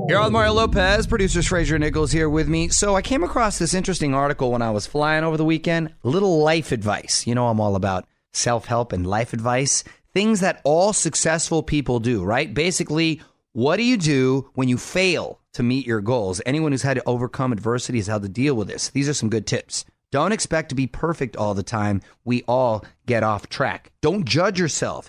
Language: English